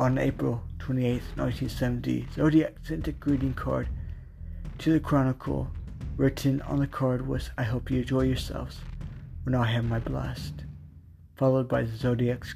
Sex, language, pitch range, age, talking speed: male, English, 100-135 Hz, 60-79, 150 wpm